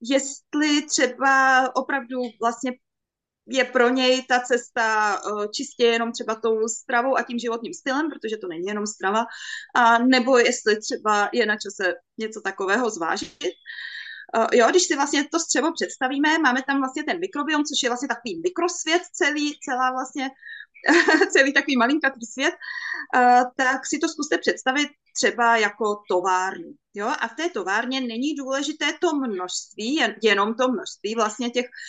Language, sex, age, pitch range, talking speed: Czech, female, 20-39, 235-315 Hz, 150 wpm